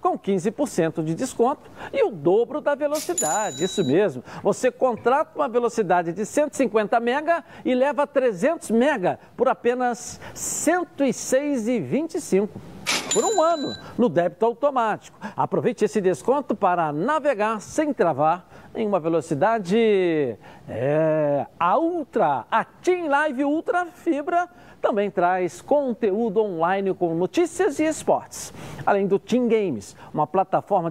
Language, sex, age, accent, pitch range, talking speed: Portuguese, male, 60-79, Brazilian, 200-290 Hz, 120 wpm